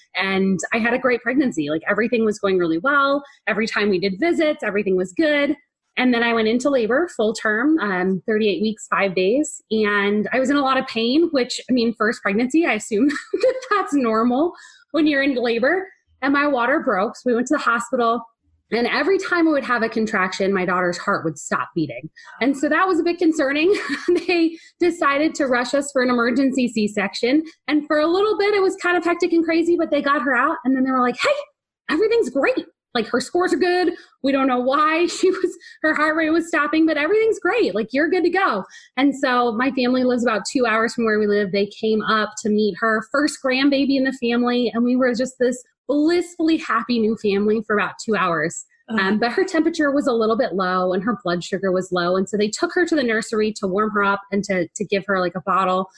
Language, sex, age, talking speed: English, female, 20-39, 230 wpm